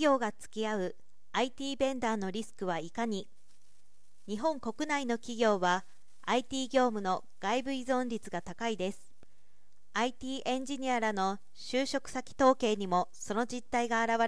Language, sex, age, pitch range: Japanese, female, 40-59, 210-260 Hz